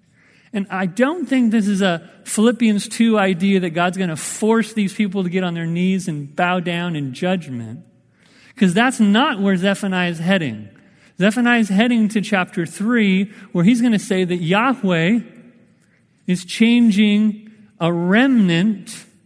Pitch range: 175-220 Hz